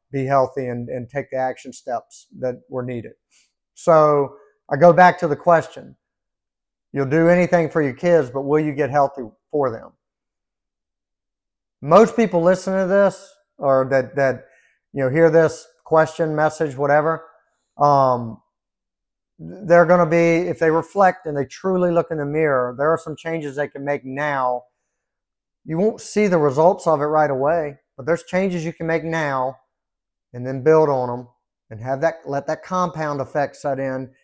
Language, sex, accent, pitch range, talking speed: English, male, American, 130-165 Hz, 175 wpm